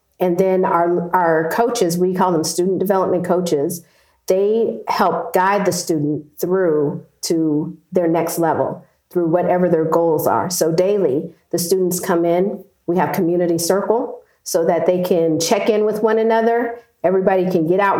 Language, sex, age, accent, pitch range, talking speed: English, female, 40-59, American, 165-200 Hz, 165 wpm